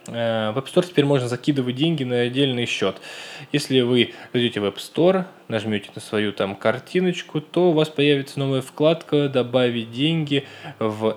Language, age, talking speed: Russian, 20-39, 160 wpm